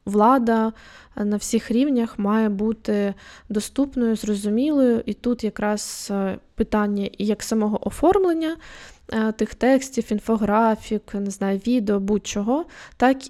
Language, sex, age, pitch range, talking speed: Ukrainian, female, 20-39, 200-235 Hz, 105 wpm